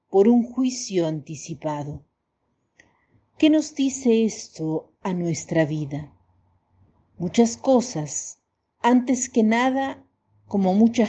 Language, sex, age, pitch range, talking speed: Spanish, female, 50-69, 155-240 Hz, 95 wpm